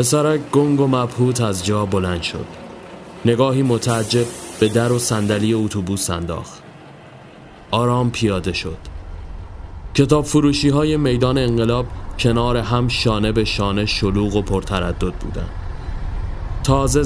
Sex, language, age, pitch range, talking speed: male, Persian, 30-49, 95-125 Hz, 120 wpm